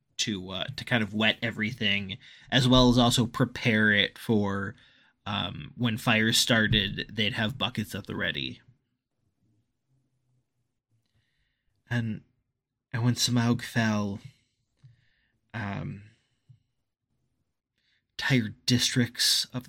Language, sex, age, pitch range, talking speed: English, male, 20-39, 110-125 Hz, 100 wpm